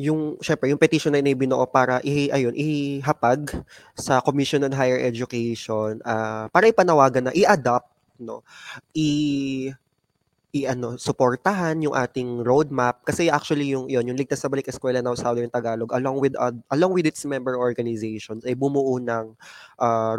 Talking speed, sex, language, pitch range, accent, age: 155 wpm, male, Filipino, 120-145 Hz, native, 20-39